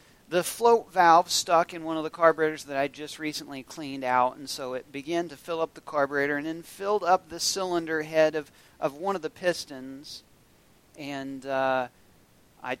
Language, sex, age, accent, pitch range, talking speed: English, male, 40-59, American, 145-180 Hz, 190 wpm